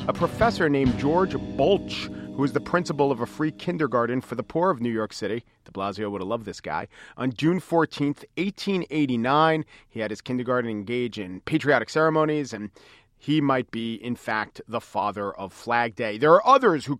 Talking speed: 190 wpm